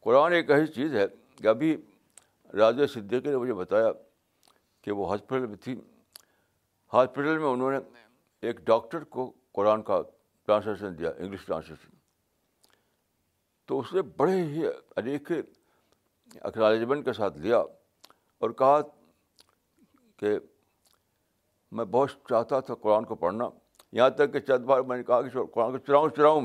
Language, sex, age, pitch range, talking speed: Urdu, male, 60-79, 105-150 Hz, 140 wpm